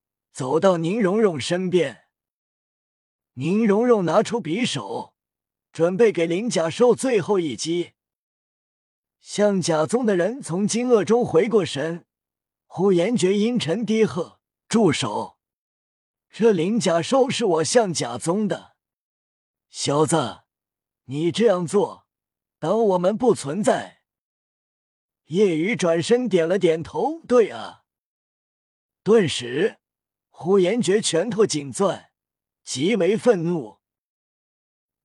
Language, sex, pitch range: Chinese, male, 155-220 Hz